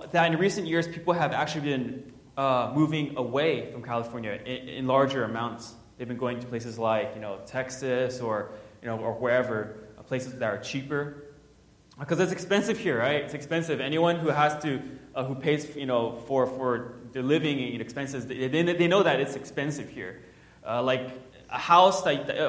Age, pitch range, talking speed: 20-39, 125-165 Hz, 190 wpm